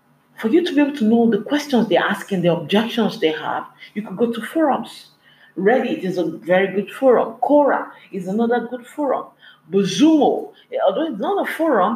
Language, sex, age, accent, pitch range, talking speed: English, female, 40-59, Nigerian, 185-265 Hz, 185 wpm